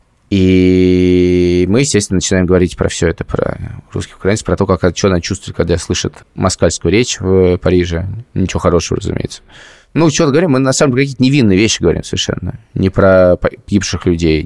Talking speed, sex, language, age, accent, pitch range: 170 wpm, male, Russian, 20-39, native, 90-110 Hz